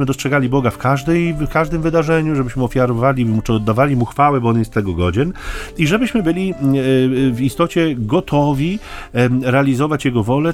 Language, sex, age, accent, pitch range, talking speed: Polish, male, 30-49, native, 110-145 Hz, 155 wpm